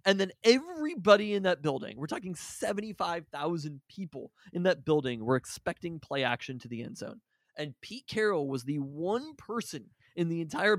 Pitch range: 135-175 Hz